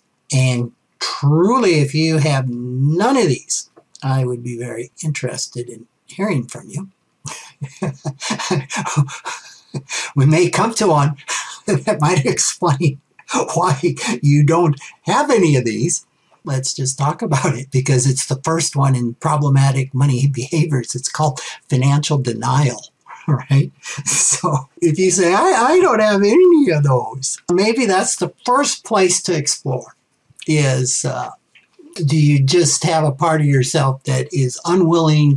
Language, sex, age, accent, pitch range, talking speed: English, male, 60-79, American, 130-165 Hz, 140 wpm